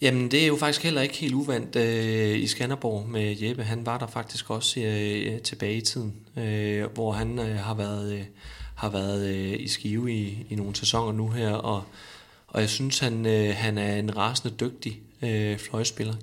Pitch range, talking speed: 105-120 Hz, 155 wpm